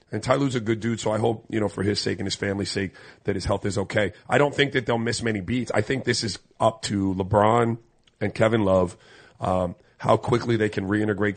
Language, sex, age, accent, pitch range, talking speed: English, male, 30-49, American, 100-120 Hz, 245 wpm